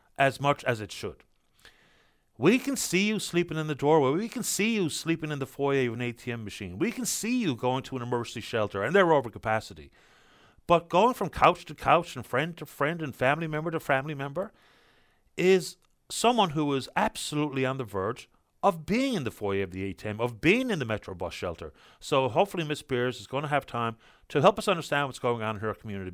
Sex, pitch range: male, 110-155 Hz